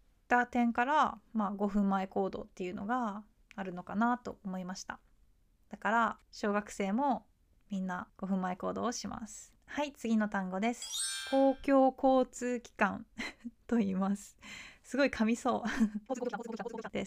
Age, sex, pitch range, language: 20-39, female, 200-250 Hz, Japanese